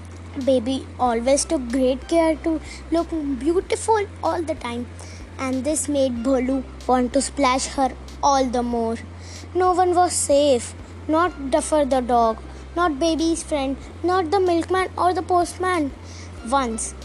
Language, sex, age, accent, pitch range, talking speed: English, female, 20-39, Indian, 235-310 Hz, 140 wpm